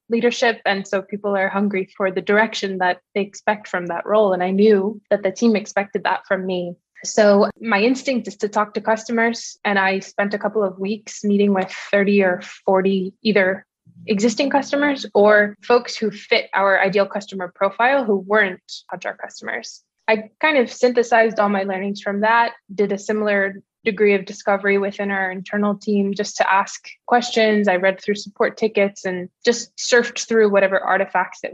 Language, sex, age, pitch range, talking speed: English, female, 20-39, 195-225 Hz, 180 wpm